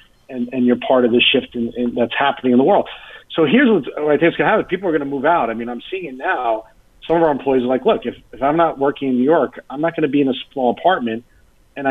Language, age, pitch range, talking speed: English, 40-59, 115-135 Hz, 295 wpm